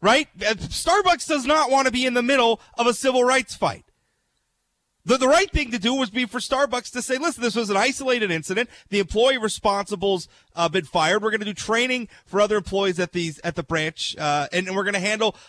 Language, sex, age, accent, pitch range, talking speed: English, male, 30-49, American, 205-280 Hz, 235 wpm